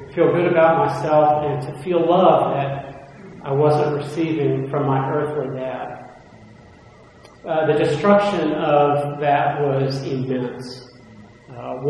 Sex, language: male, English